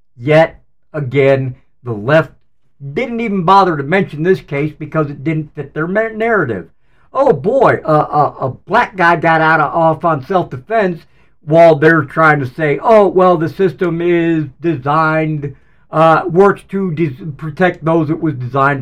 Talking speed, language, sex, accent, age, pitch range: 160 wpm, English, male, American, 50-69, 130-175 Hz